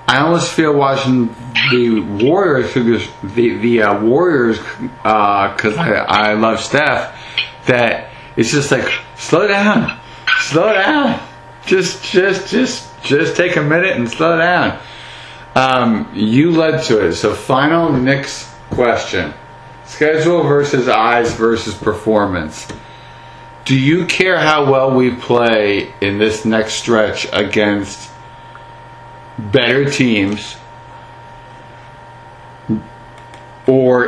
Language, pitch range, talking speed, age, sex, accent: English, 110-135 Hz, 110 wpm, 50-69, male, American